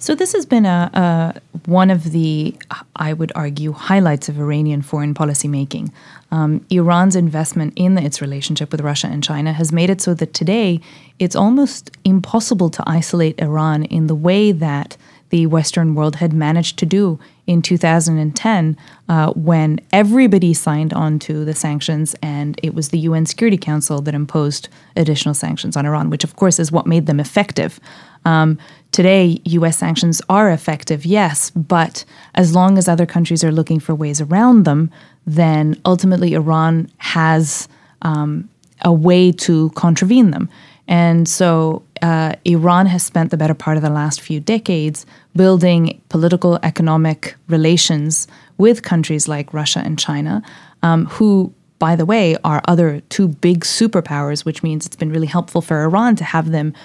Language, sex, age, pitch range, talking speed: English, female, 20-39, 155-180 Hz, 165 wpm